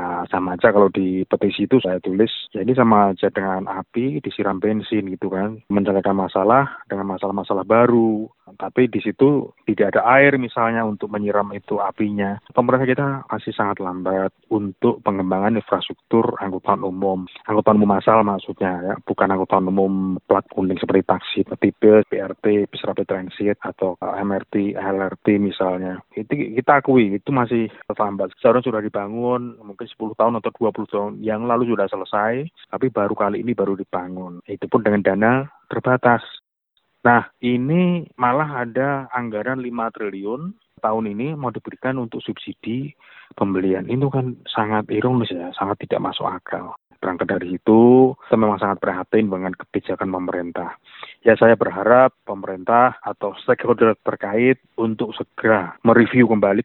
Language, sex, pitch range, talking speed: Indonesian, male, 100-120 Hz, 145 wpm